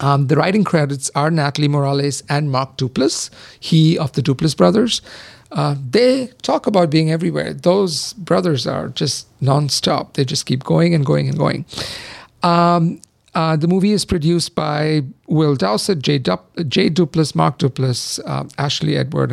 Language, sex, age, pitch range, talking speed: English, male, 50-69, 140-170 Hz, 160 wpm